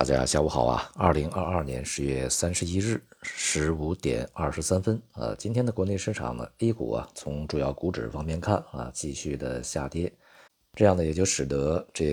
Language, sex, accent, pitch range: Chinese, male, native, 65-90 Hz